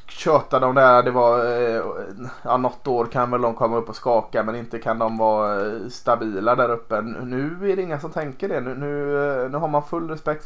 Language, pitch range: Swedish, 115-140 Hz